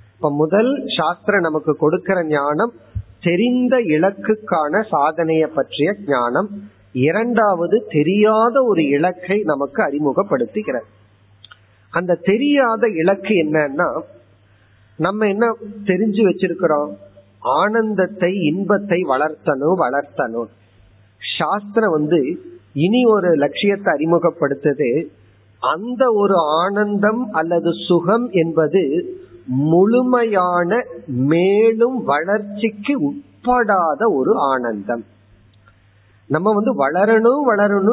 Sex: male